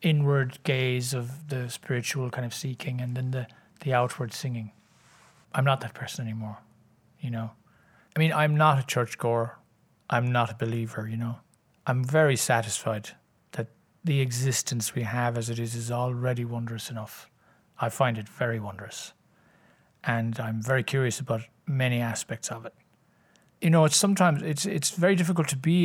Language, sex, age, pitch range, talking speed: English, male, 40-59, 115-145 Hz, 170 wpm